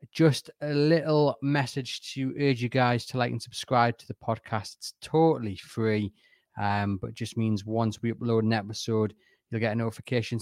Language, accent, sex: English, British, male